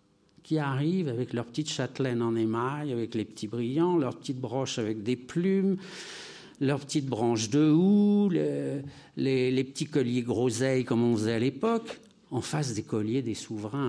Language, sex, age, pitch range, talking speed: French, male, 60-79, 110-145 Hz, 165 wpm